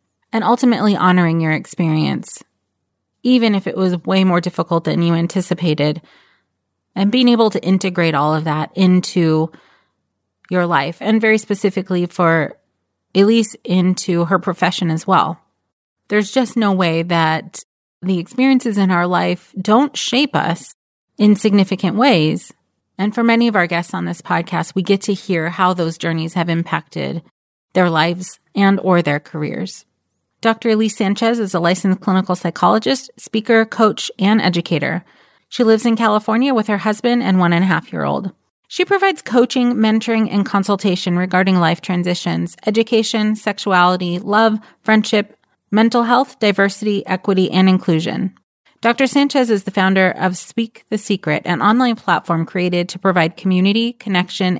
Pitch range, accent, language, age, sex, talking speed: 175-220 Hz, American, English, 30-49, female, 145 wpm